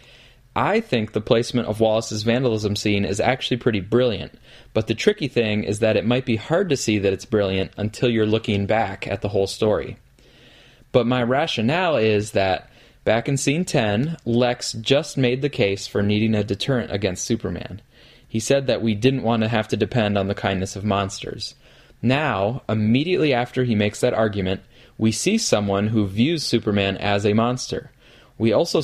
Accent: American